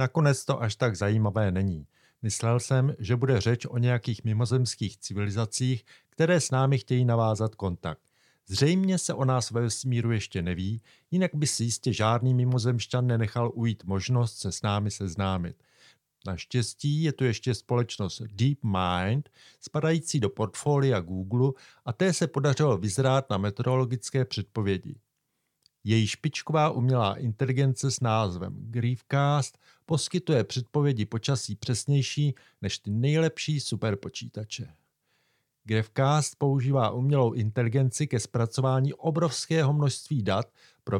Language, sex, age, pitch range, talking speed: Czech, male, 50-69, 110-140 Hz, 125 wpm